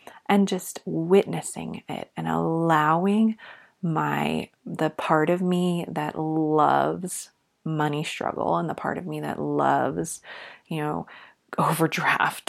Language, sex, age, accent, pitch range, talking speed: English, female, 30-49, American, 155-200 Hz, 120 wpm